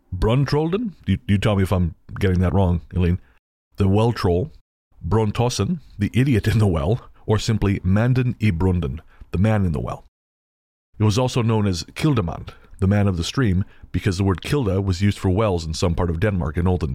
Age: 30-49